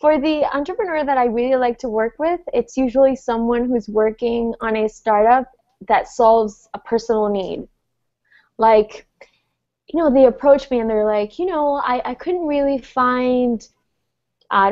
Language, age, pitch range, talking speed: English, 20-39, 215-265 Hz, 165 wpm